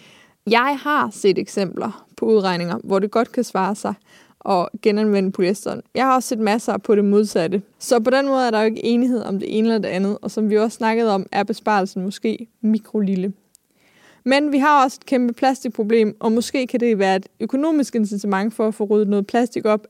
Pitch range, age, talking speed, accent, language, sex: 210-255 Hz, 20-39, 210 wpm, native, Danish, female